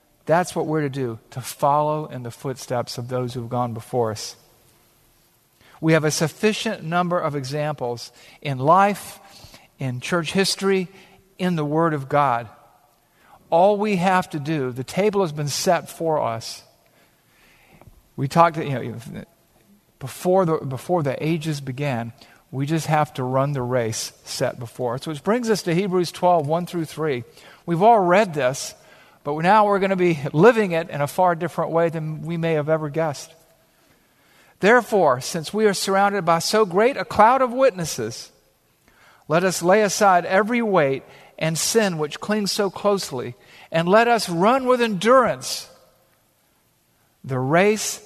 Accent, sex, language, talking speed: American, male, English, 160 wpm